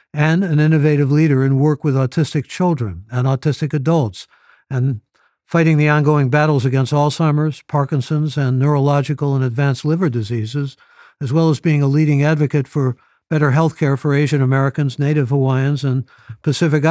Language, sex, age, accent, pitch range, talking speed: English, male, 60-79, American, 125-150 Hz, 155 wpm